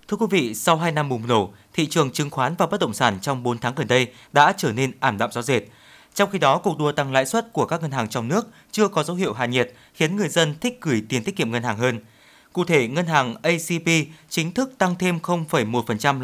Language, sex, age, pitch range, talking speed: Vietnamese, male, 20-39, 130-175 Hz, 255 wpm